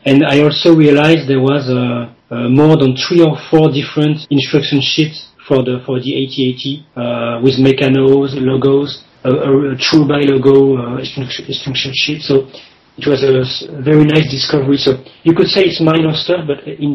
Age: 30-49